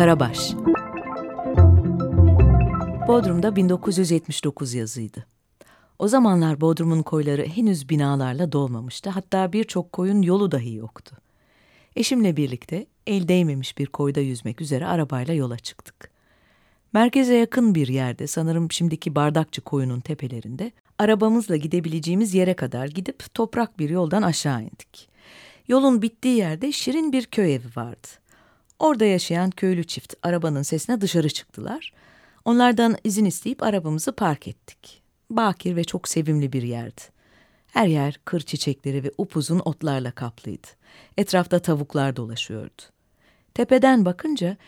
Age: 40-59